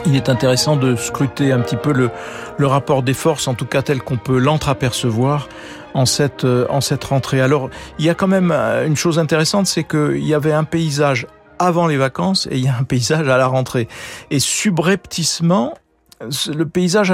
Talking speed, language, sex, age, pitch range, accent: 195 wpm, French, male, 50-69, 125-155 Hz, French